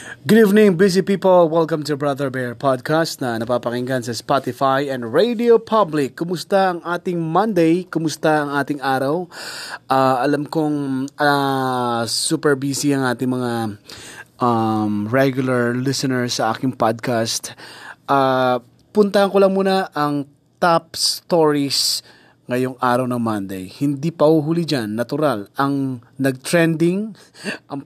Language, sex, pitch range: Filipino, male, 125-160 Hz